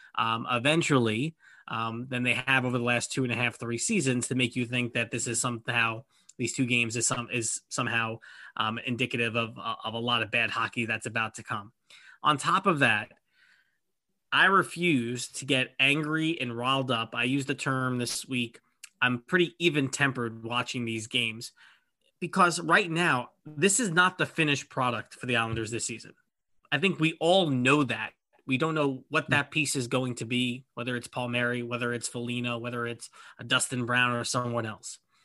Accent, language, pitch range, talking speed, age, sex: American, English, 120-140 Hz, 190 wpm, 20-39, male